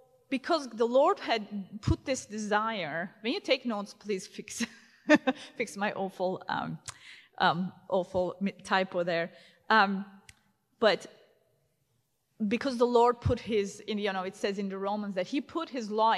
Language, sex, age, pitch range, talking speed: English, female, 30-49, 190-240 Hz, 150 wpm